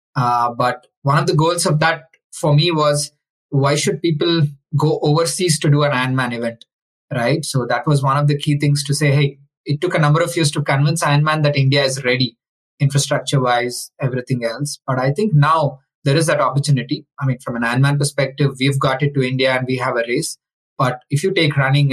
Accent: Indian